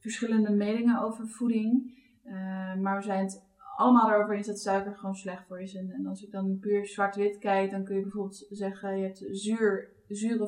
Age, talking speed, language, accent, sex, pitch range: 20-39, 200 wpm, Dutch, Dutch, female, 190-215 Hz